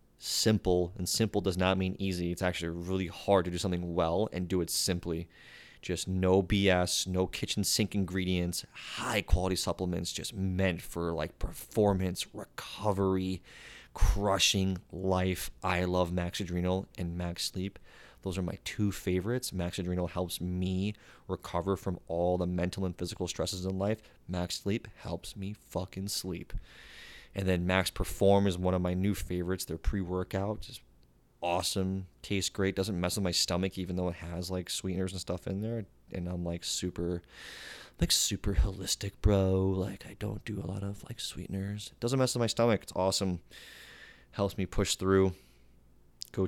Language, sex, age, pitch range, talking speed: English, male, 20-39, 90-100 Hz, 165 wpm